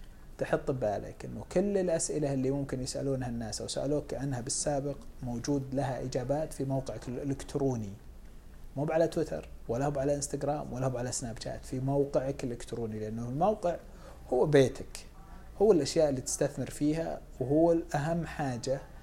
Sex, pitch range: male, 120-145 Hz